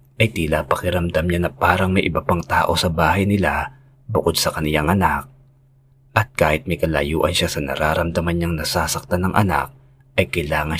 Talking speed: 165 wpm